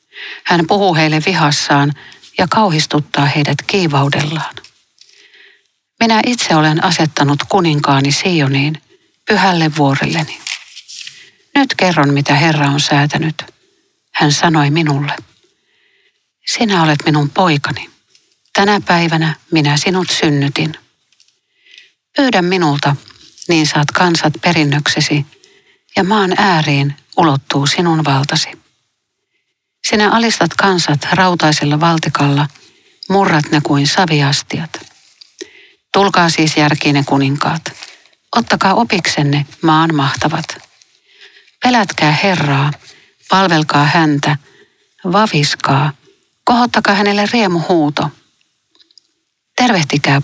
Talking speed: 85 wpm